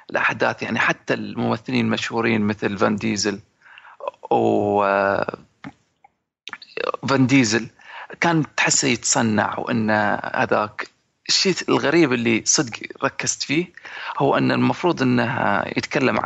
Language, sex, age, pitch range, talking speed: Arabic, male, 40-59, 105-135 Hz, 95 wpm